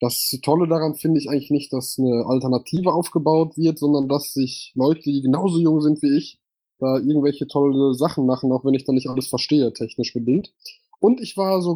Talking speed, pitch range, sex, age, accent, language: 205 wpm, 125-155 Hz, male, 20-39, German, German